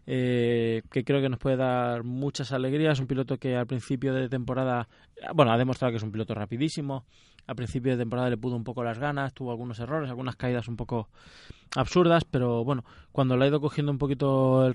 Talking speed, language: 210 wpm, Spanish